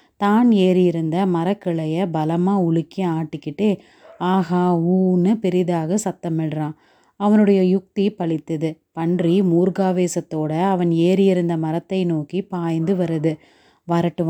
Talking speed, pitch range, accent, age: 95 wpm, 170-195 Hz, native, 30-49